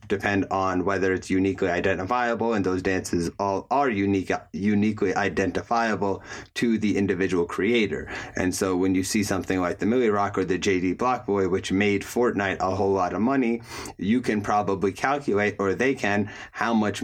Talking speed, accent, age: 175 wpm, American, 30-49